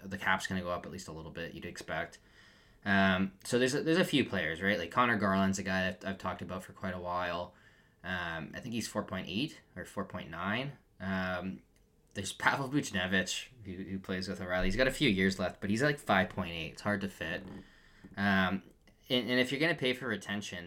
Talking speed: 210 wpm